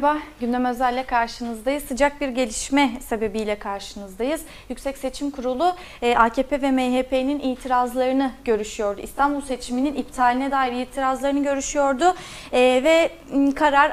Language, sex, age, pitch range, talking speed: Turkish, female, 30-49, 250-300 Hz, 110 wpm